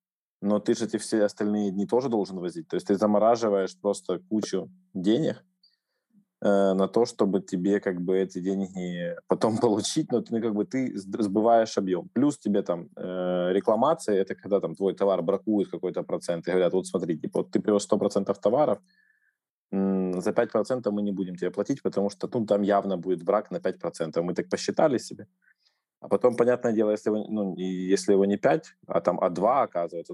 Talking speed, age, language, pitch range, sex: 190 wpm, 20-39, Russian, 95-115 Hz, male